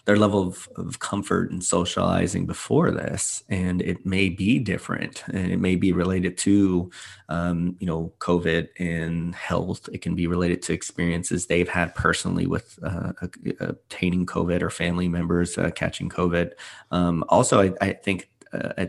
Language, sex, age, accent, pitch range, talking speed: English, male, 30-49, American, 85-95 Hz, 170 wpm